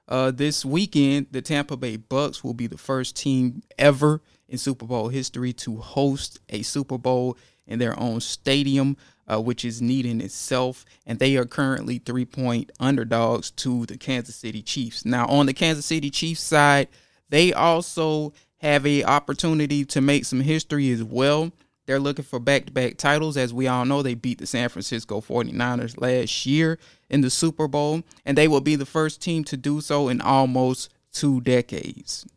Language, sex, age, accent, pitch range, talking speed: English, male, 20-39, American, 120-145 Hz, 180 wpm